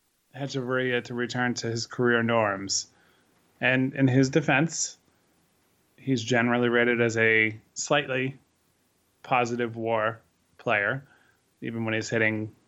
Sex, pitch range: male, 115-135 Hz